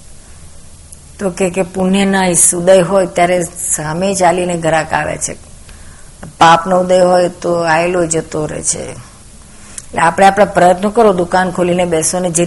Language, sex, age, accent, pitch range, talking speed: Gujarati, female, 50-69, native, 160-185 Hz, 110 wpm